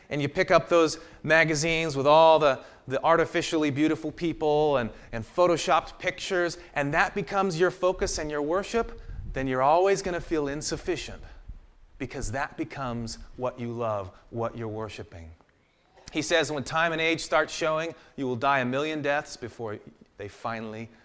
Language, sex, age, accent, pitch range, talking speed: English, male, 30-49, American, 125-175 Hz, 165 wpm